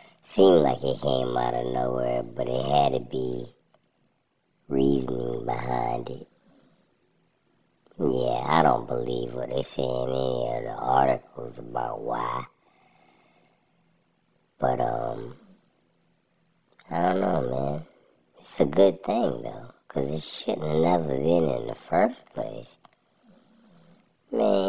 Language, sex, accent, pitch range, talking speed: English, male, American, 65-80 Hz, 125 wpm